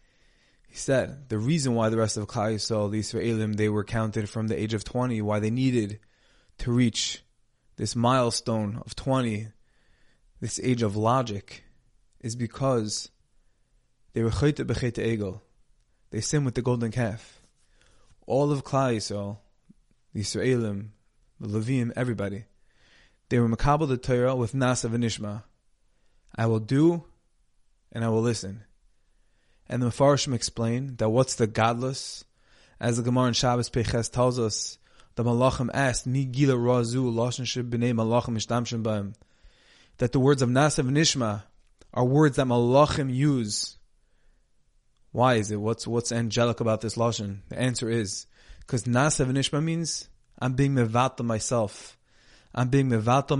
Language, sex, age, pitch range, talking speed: English, male, 20-39, 110-130 Hz, 140 wpm